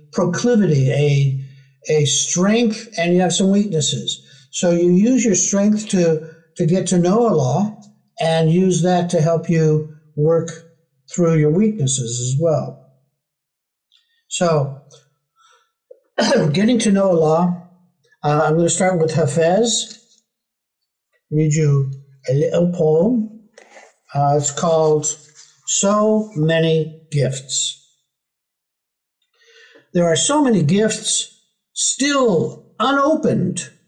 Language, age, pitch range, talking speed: English, 60-79, 150-215 Hz, 110 wpm